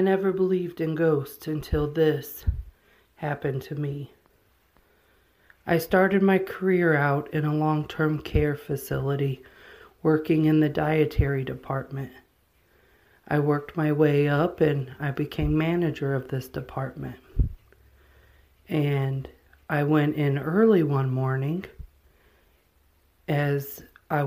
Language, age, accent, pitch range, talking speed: English, 40-59, American, 140-165 Hz, 115 wpm